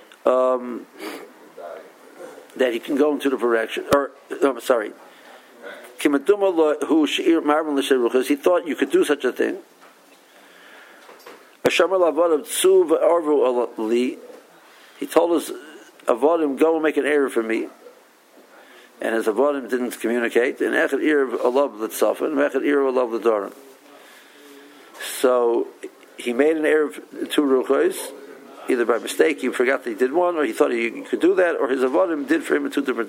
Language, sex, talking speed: English, male, 160 wpm